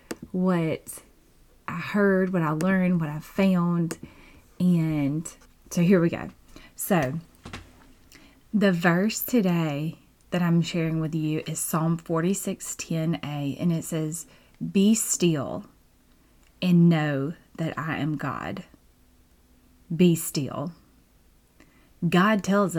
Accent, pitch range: American, 150-185 Hz